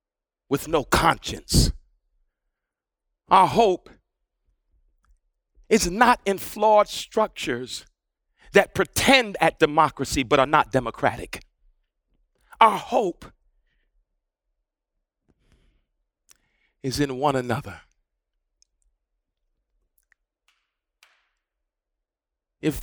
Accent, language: American, English